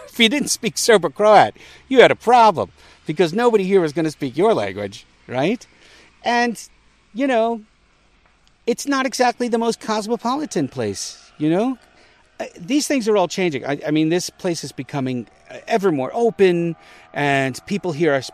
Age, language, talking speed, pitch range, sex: 50-69, English, 165 wpm, 135-205 Hz, male